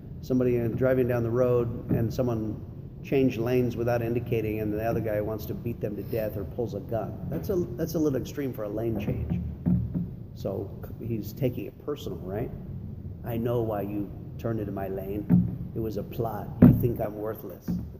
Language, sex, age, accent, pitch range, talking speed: English, male, 50-69, American, 105-130 Hz, 190 wpm